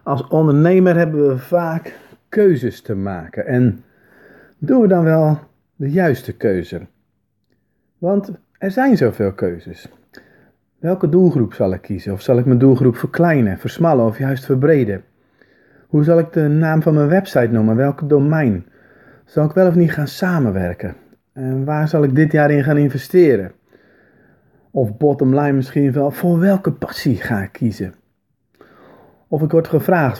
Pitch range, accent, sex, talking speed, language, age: 115-155 Hz, Dutch, male, 155 wpm, Dutch, 40-59